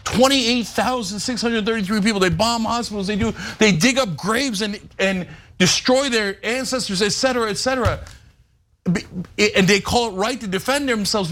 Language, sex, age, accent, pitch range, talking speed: English, male, 50-69, American, 210-300 Hz, 170 wpm